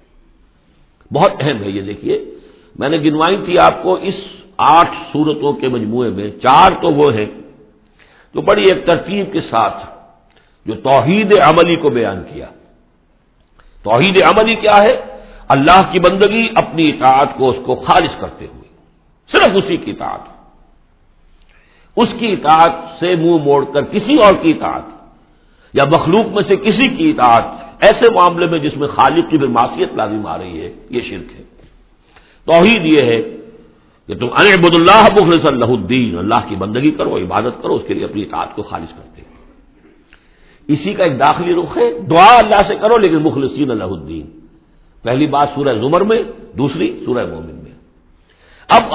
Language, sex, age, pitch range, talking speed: Urdu, male, 60-79, 125-205 Hz, 165 wpm